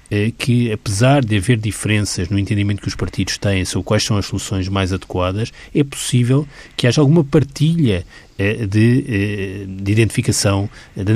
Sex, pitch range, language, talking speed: male, 100-120 Hz, Portuguese, 150 wpm